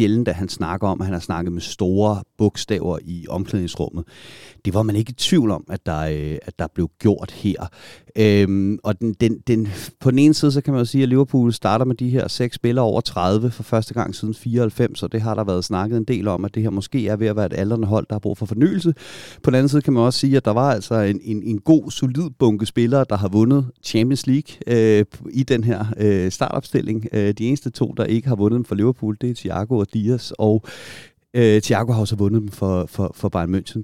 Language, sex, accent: Danish, male, native